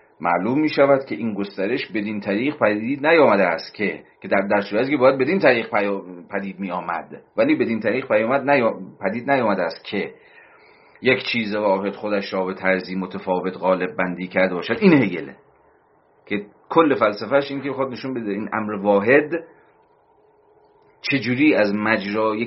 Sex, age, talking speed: male, 40-59, 150 wpm